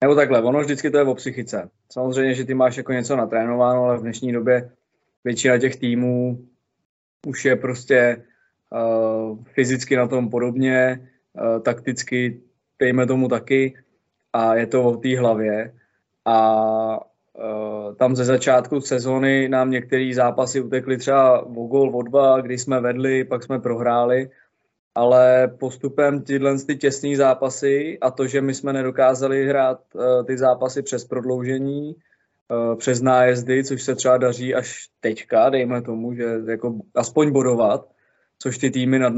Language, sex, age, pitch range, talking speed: Czech, male, 20-39, 120-135 Hz, 150 wpm